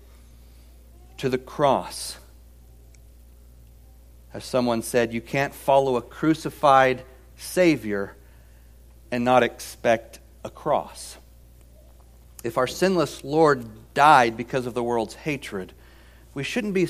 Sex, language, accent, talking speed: male, English, American, 105 wpm